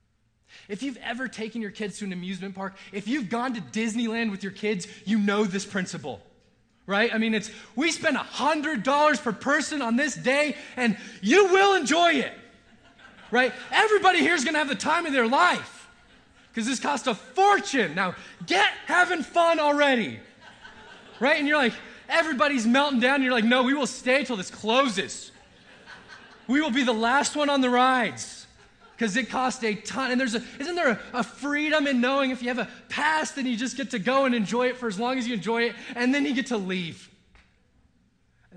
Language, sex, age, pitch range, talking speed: English, male, 20-39, 175-265 Hz, 200 wpm